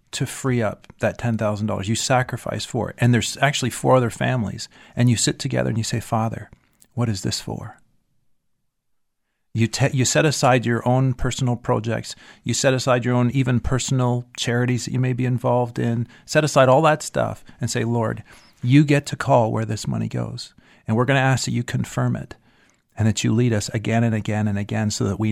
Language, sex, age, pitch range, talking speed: English, male, 40-59, 105-125 Hz, 205 wpm